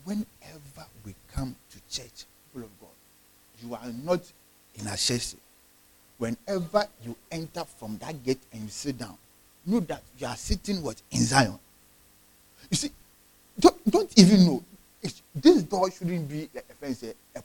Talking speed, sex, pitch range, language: 155 wpm, male, 115-185 Hz, English